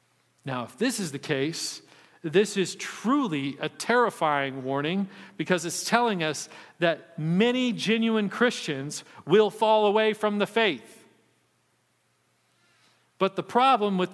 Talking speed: 125 wpm